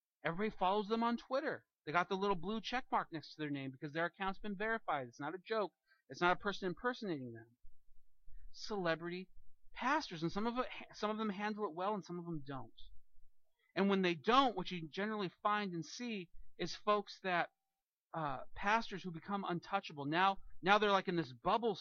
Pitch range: 165-220 Hz